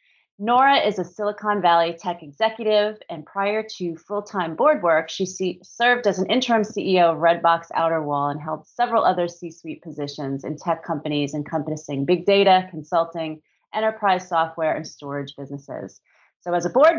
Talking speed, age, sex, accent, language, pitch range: 155 wpm, 30-49, female, American, English, 165-210 Hz